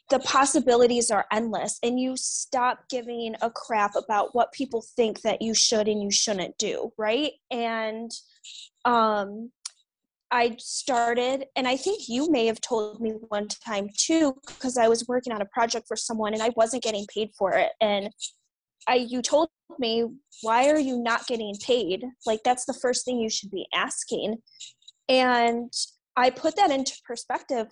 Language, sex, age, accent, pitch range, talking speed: English, female, 20-39, American, 220-265 Hz, 170 wpm